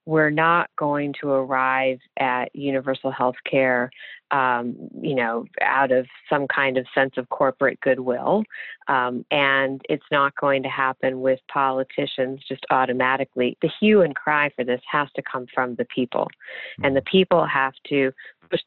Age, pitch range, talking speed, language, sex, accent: 40-59, 130-155 Hz, 160 wpm, English, female, American